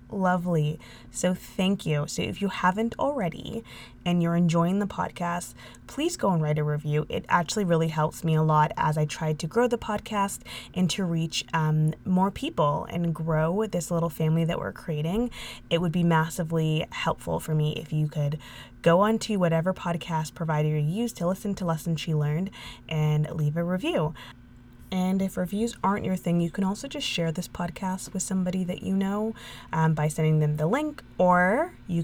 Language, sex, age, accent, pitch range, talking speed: English, female, 20-39, American, 155-195 Hz, 190 wpm